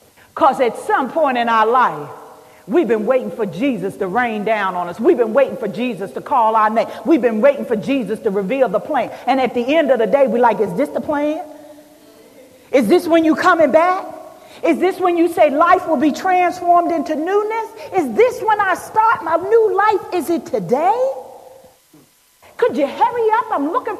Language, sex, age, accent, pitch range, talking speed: English, female, 40-59, American, 250-385 Hz, 205 wpm